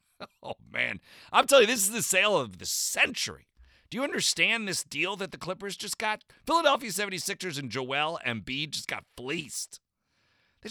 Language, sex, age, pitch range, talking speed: English, male, 40-59, 110-180 Hz, 175 wpm